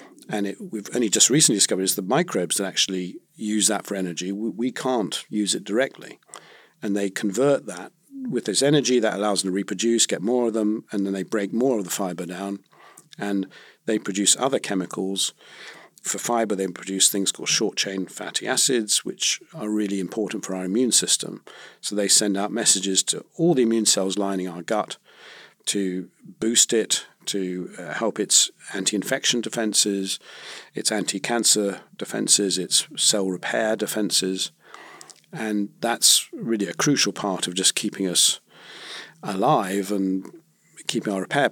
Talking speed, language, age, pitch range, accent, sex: 160 wpm, English, 50-69, 95-115 Hz, British, male